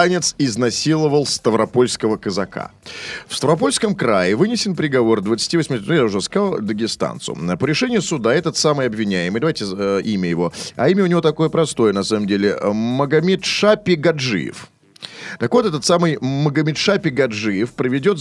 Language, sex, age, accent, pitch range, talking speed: Russian, male, 30-49, native, 120-185 Hz, 140 wpm